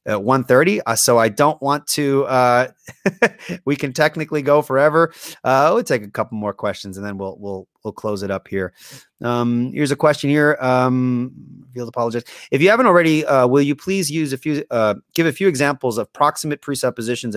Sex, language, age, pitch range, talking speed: male, English, 30-49, 115-150 Hz, 200 wpm